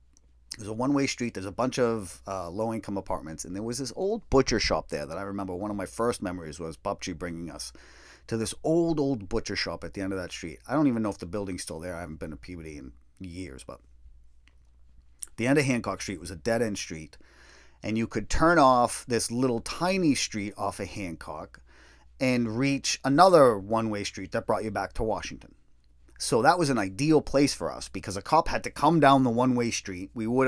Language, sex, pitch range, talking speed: English, male, 75-120 Hz, 220 wpm